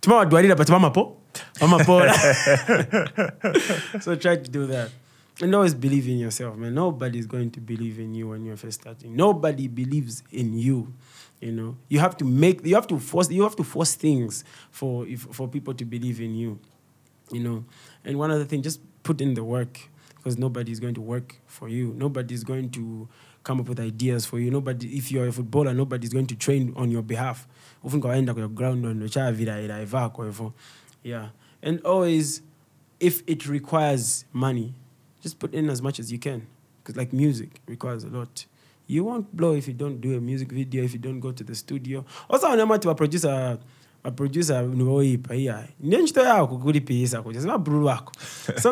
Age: 20-39